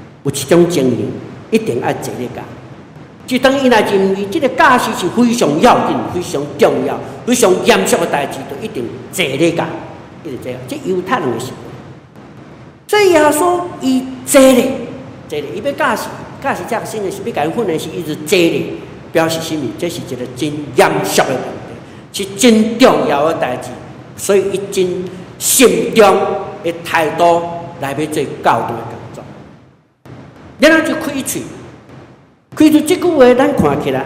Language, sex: Chinese, male